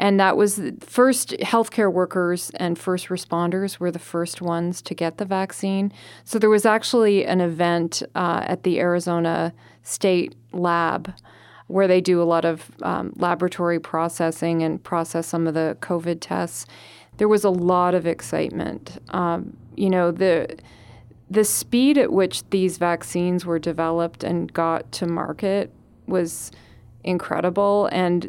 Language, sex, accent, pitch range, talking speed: English, female, American, 165-190 Hz, 150 wpm